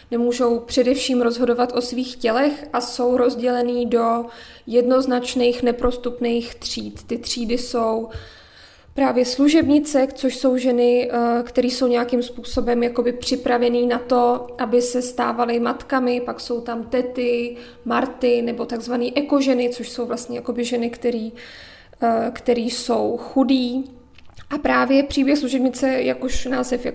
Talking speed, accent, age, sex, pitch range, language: 120 wpm, native, 20-39, female, 240-255 Hz, Czech